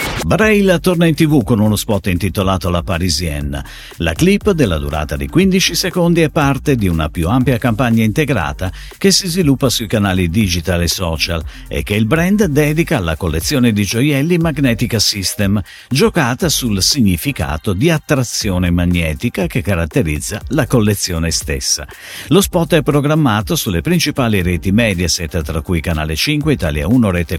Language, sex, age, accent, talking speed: Italian, male, 50-69, native, 155 wpm